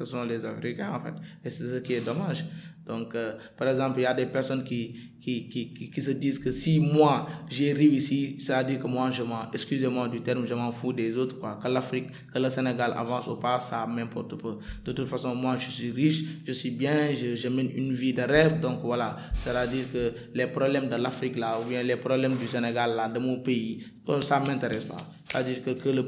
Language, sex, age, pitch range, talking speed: French, male, 20-39, 120-145 Hz, 240 wpm